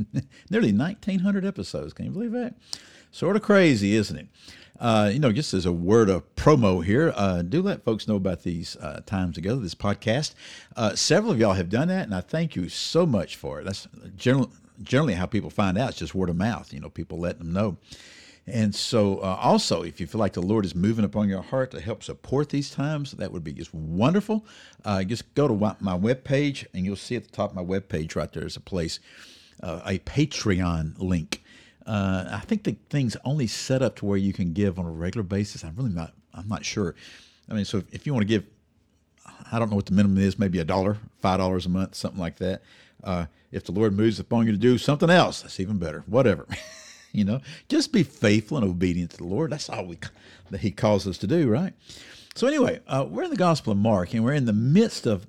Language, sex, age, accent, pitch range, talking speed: English, male, 60-79, American, 95-125 Hz, 230 wpm